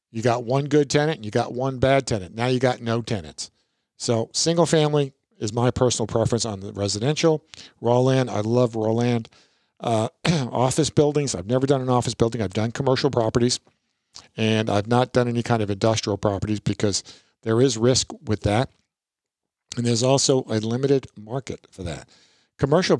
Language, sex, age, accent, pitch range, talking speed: English, male, 50-69, American, 110-140 Hz, 180 wpm